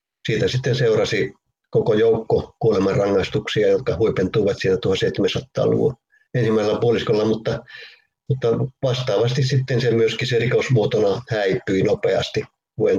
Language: Finnish